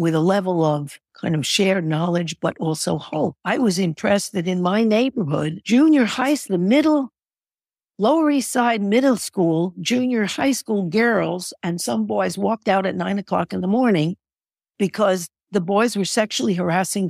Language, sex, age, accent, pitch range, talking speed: English, female, 60-79, American, 170-225 Hz, 170 wpm